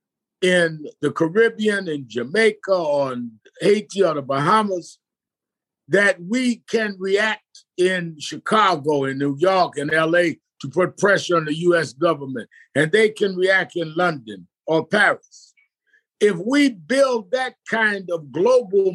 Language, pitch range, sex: English, 170-230 Hz, male